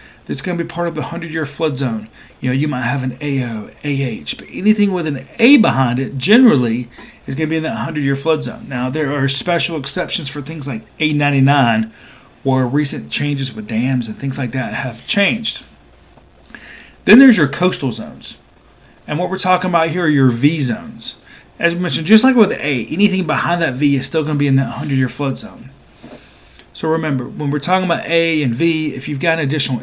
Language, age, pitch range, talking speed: English, 40-59, 130-170 Hz, 220 wpm